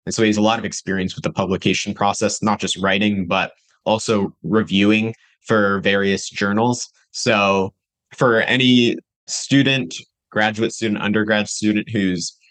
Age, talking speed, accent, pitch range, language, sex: 20-39, 145 wpm, American, 95-115 Hz, English, male